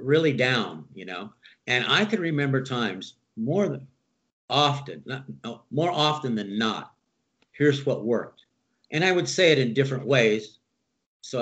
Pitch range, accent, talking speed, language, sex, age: 130-190 Hz, American, 145 wpm, English, male, 50-69